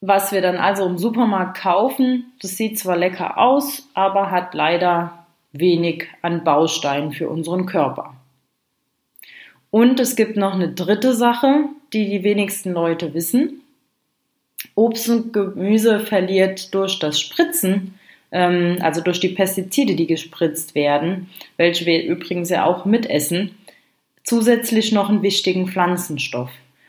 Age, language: 30-49, German